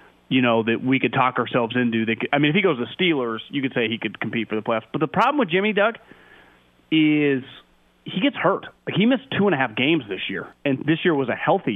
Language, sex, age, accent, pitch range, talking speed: English, male, 30-49, American, 130-160 Hz, 260 wpm